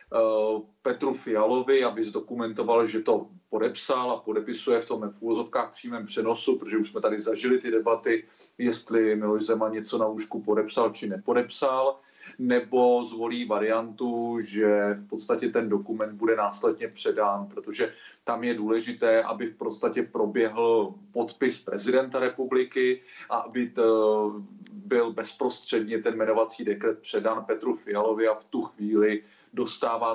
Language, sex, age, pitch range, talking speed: Czech, male, 30-49, 110-130 Hz, 135 wpm